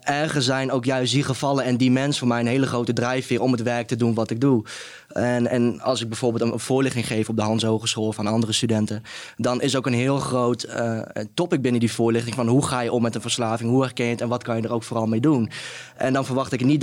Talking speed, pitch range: 265 wpm, 120-135 Hz